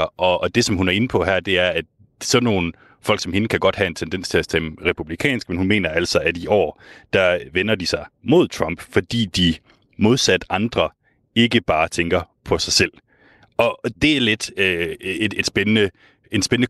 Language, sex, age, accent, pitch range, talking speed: Danish, male, 30-49, native, 90-110 Hz, 210 wpm